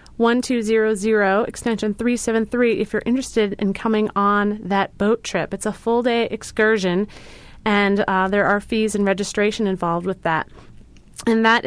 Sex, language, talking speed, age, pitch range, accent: female, English, 175 wpm, 30-49, 200-240 Hz, American